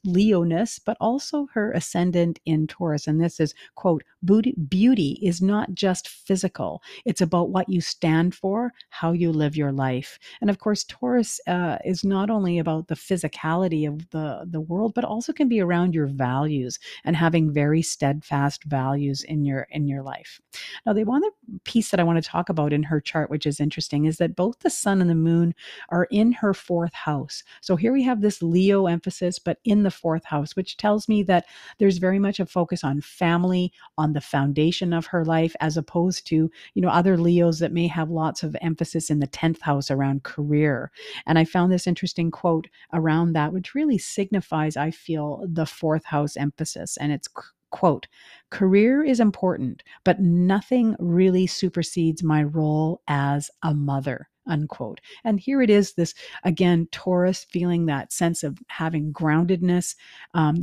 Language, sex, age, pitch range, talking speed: English, female, 50-69, 155-190 Hz, 180 wpm